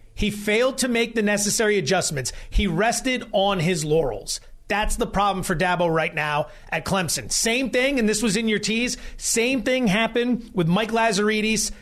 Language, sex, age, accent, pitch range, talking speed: English, male, 30-49, American, 185-235 Hz, 180 wpm